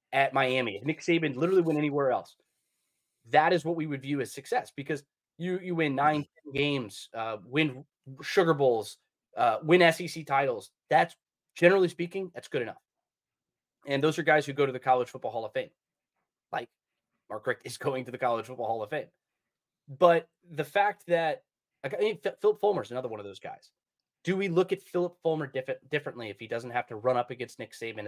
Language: English